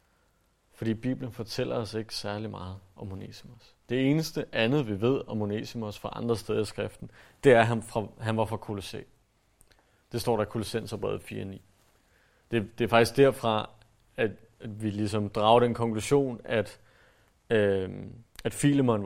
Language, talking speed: Danish, 160 wpm